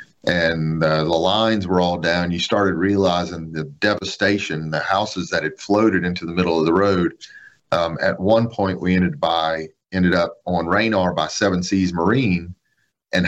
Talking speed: 175 wpm